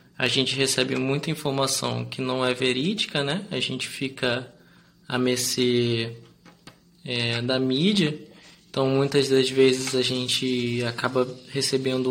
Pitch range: 130-165 Hz